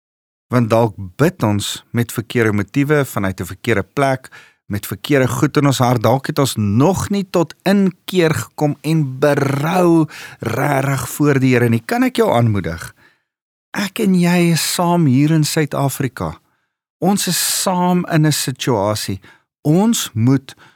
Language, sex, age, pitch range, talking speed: English, male, 50-69, 115-165 Hz, 155 wpm